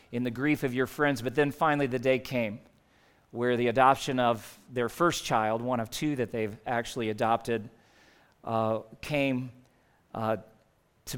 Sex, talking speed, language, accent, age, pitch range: male, 160 wpm, English, American, 40-59, 130-160 Hz